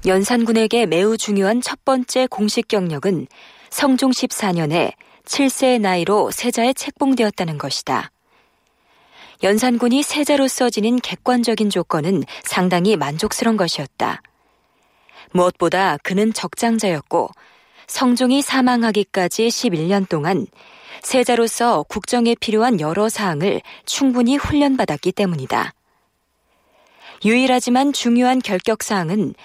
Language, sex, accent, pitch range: Korean, female, native, 185-245 Hz